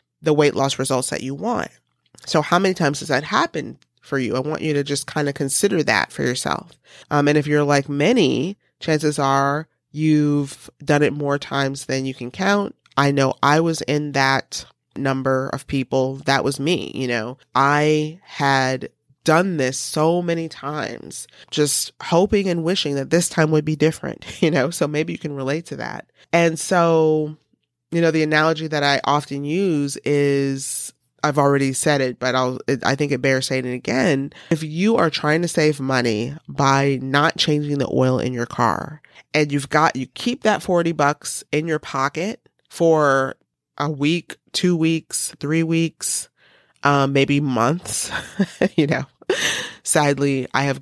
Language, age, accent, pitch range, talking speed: English, 30-49, American, 135-155 Hz, 175 wpm